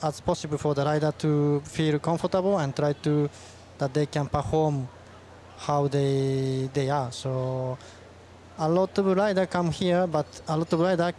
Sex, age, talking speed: male, 20-39, 165 wpm